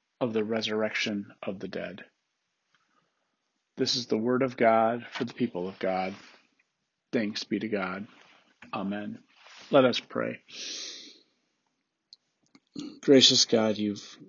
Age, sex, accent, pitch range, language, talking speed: 40-59, male, American, 105-130 Hz, English, 120 wpm